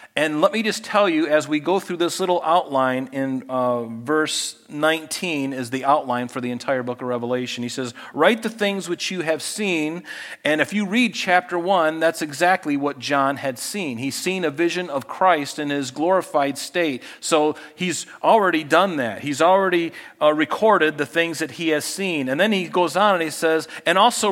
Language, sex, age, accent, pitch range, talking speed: English, male, 40-59, American, 145-195 Hz, 200 wpm